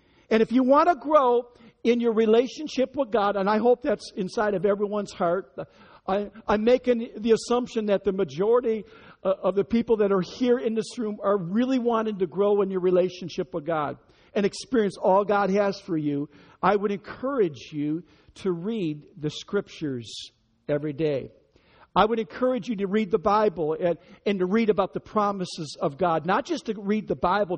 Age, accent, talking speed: 50-69, American, 185 wpm